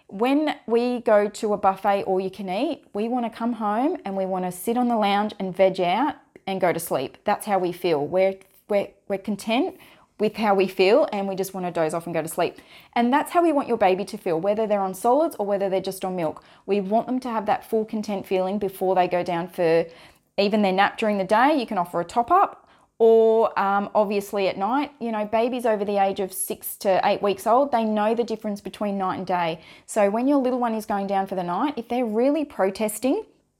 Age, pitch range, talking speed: 20-39, 190-230 Hz, 240 wpm